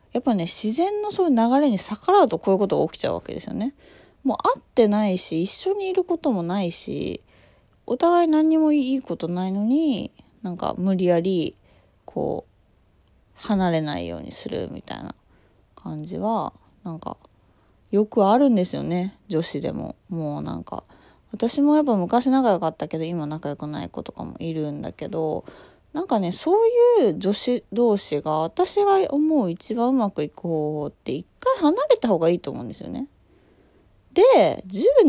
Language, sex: Japanese, female